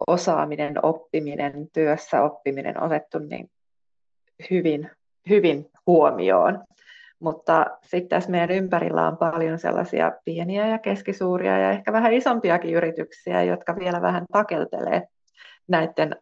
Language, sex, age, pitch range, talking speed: Finnish, female, 30-49, 165-200 Hz, 110 wpm